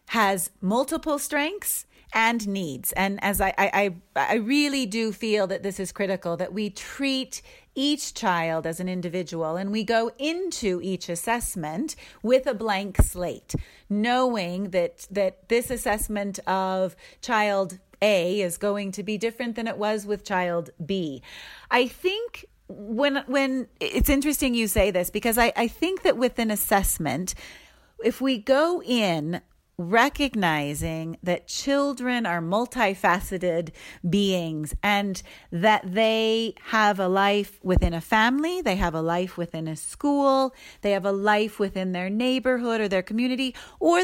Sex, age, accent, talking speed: female, 30-49, American, 145 wpm